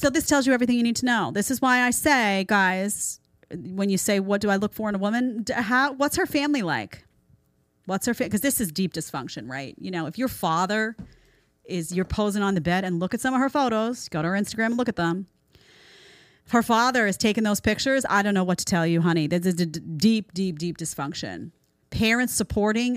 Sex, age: female, 30-49